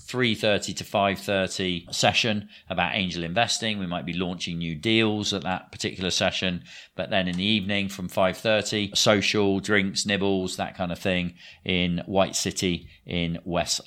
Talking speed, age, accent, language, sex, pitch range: 150 wpm, 40-59, British, English, male, 85-105 Hz